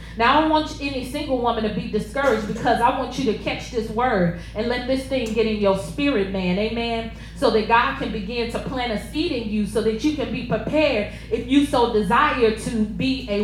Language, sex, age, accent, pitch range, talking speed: English, female, 30-49, American, 235-320 Hz, 230 wpm